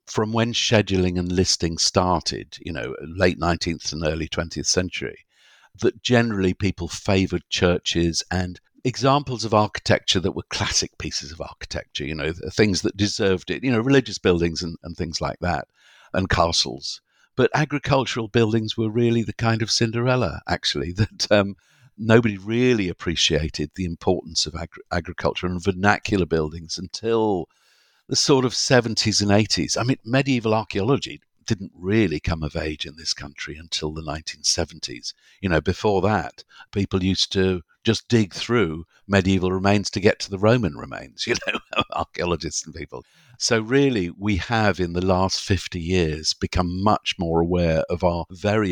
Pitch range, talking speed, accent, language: 85-110 Hz, 160 wpm, British, English